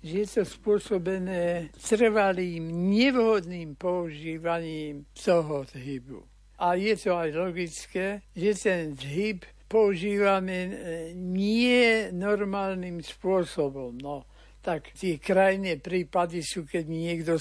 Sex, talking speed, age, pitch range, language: male, 95 wpm, 60-79, 160-195 Hz, Slovak